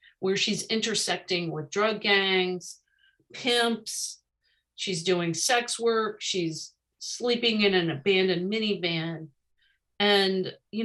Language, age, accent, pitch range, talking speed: English, 50-69, American, 175-220 Hz, 105 wpm